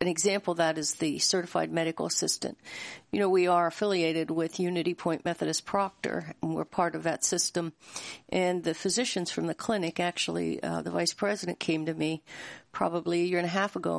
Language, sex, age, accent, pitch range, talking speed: English, female, 50-69, American, 165-185 Hz, 195 wpm